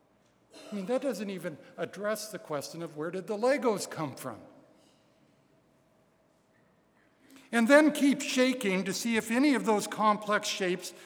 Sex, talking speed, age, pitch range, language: male, 145 wpm, 60-79, 150-215 Hz, English